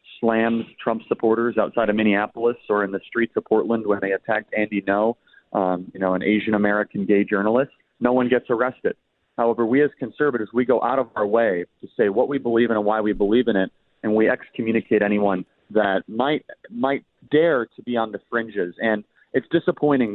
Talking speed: 195 wpm